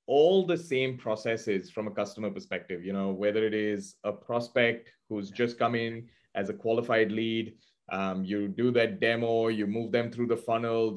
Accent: Indian